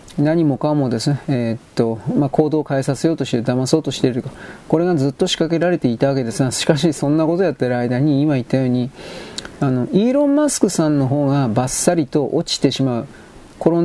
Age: 40-59